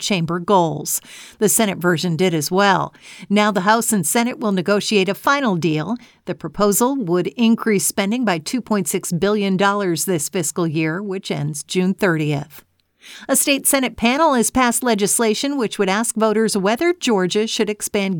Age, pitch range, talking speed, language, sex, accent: 50-69, 175-220 Hz, 160 wpm, English, female, American